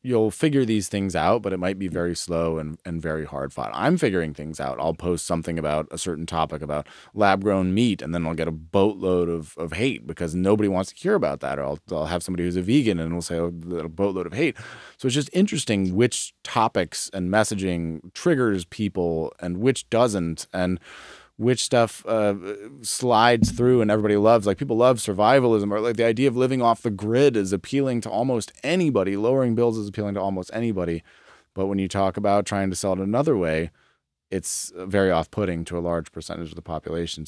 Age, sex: 20-39, male